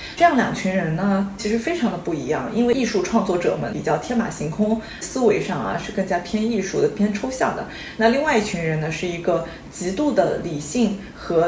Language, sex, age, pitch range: Chinese, female, 20-39, 180-225 Hz